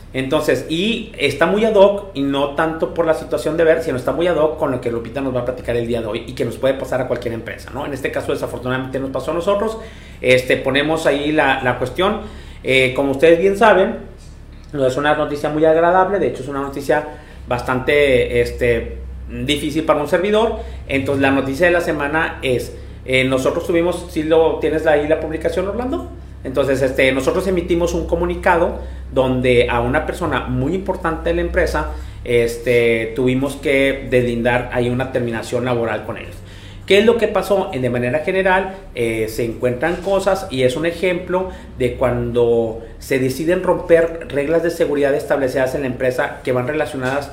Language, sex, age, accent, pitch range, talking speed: Spanish, male, 40-59, Mexican, 125-160 Hz, 190 wpm